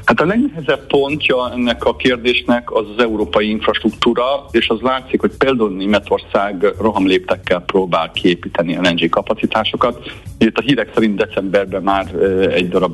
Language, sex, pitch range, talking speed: Hungarian, male, 90-120 Hz, 145 wpm